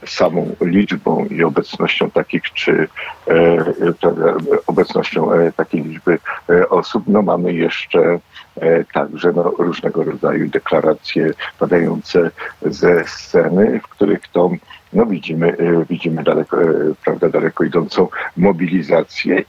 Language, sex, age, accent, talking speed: Polish, male, 50-69, native, 120 wpm